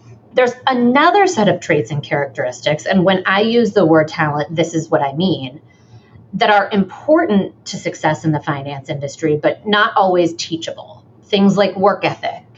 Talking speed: 170 wpm